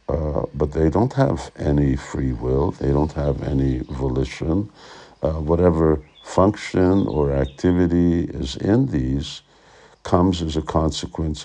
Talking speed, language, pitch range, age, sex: 130 wpm, Hungarian, 75-85 Hz, 60-79, male